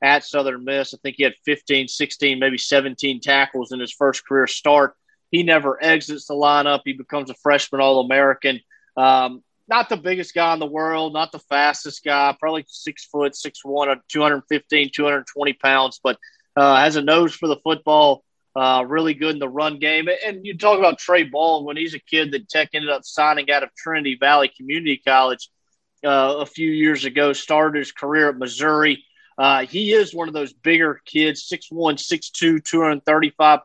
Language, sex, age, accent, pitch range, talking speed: English, male, 30-49, American, 140-160 Hz, 180 wpm